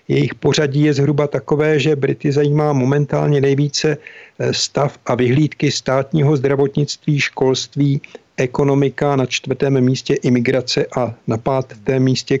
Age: 50-69